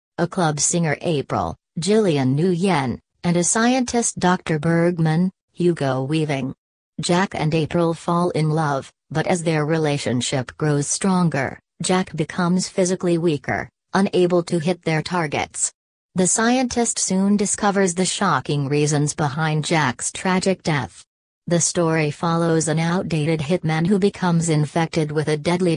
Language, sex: English, female